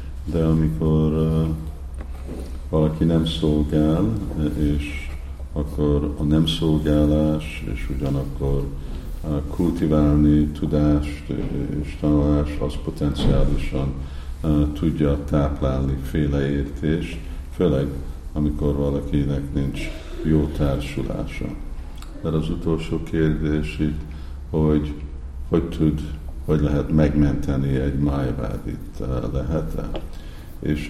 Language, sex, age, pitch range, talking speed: Hungarian, male, 50-69, 70-75 Hz, 90 wpm